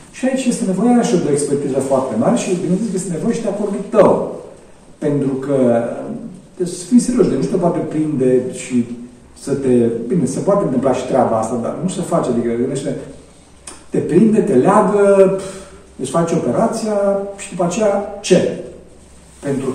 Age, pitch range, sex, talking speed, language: 50-69, 120-185 Hz, male, 180 wpm, Romanian